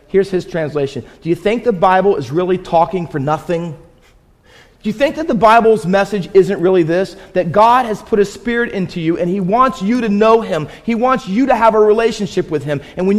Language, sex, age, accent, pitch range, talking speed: English, male, 40-59, American, 155-230 Hz, 225 wpm